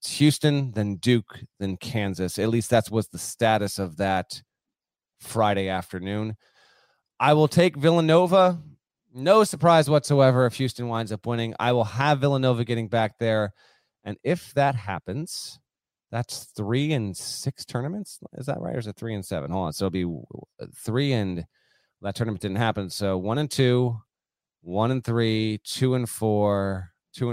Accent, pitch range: American, 100-130 Hz